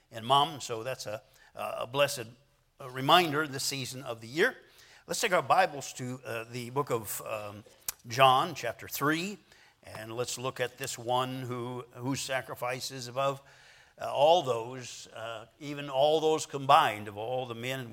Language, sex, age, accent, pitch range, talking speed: English, male, 60-79, American, 115-130 Hz, 165 wpm